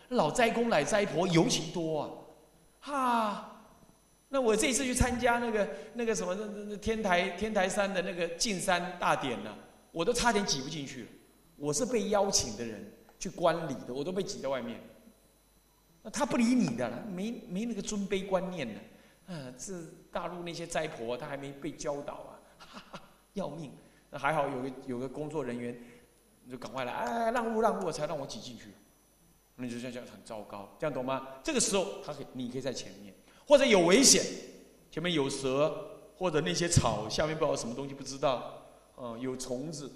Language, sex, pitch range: Chinese, male, 135-210 Hz